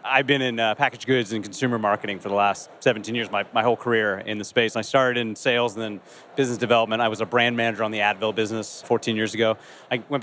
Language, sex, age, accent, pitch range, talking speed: English, male, 30-49, American, 110-130 Hz, 260 wpm